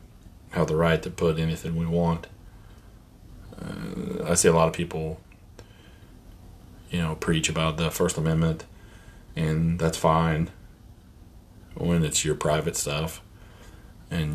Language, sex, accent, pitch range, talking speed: English, male, American, 80-95 Hz, 130 wpm